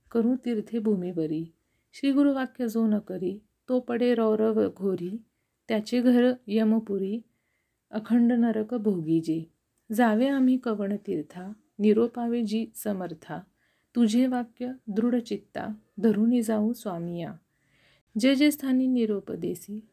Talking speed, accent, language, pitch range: 100 wpm, native, Marathi, 200-245 Hz